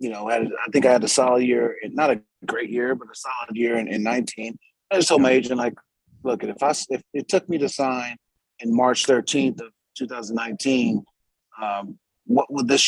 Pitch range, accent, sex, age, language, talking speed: 115-130 Hz, American, male, 30-49, English, 225 wpm